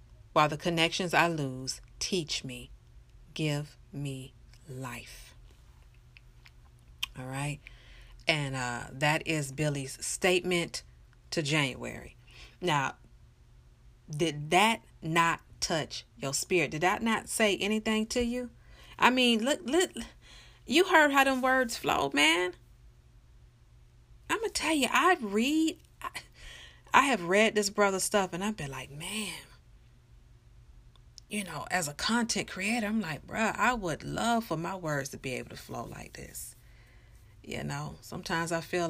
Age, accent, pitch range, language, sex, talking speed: 40-59, American, 125-190 Hz, English, female, 140 wpm